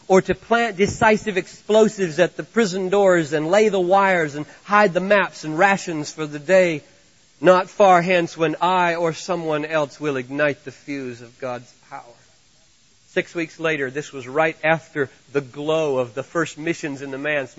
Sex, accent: male, American